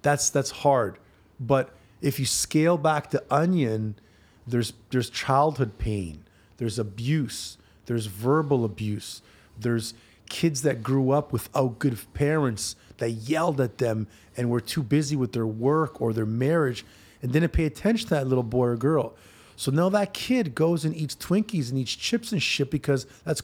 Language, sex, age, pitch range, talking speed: English, male, 30-49, 115-145 Hz, 170 wpm